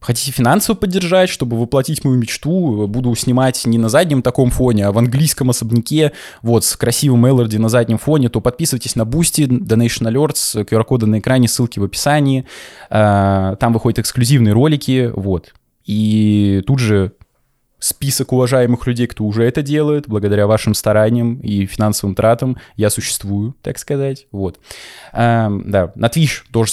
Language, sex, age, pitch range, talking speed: Russian, male, 20-39, 105-130 Hz, 155 wpm